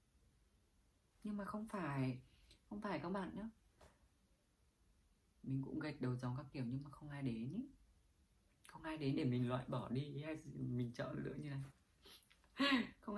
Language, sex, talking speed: Vietnamese, female, 170 wpm